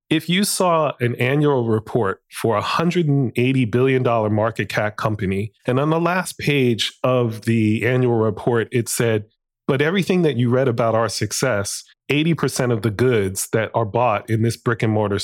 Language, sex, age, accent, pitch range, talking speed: English, male, 30-49, American, 110-130 Hz, 175 wpm